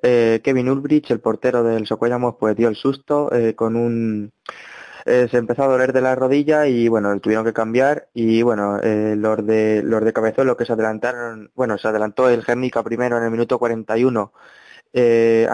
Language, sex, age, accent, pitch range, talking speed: Spanish, male, 20-39, Spanish, 110-125 Hz, 190 wpm